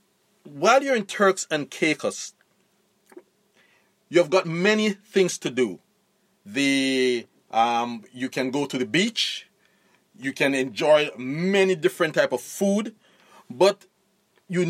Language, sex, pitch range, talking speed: English, male, 130-190 Hz, 125 wpm